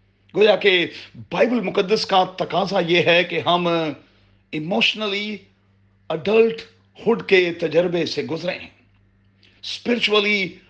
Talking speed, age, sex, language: 100 wpm, 40-59, male, Urdu